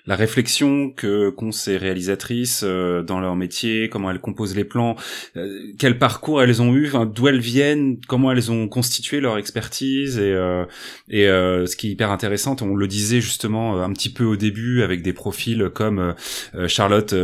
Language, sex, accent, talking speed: French, male, French, 190 wpm